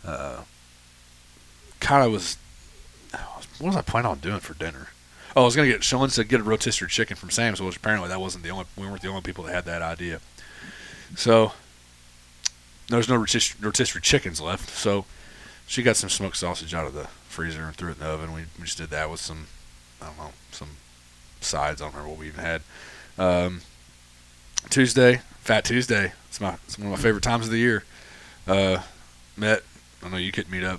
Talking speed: 205 wpm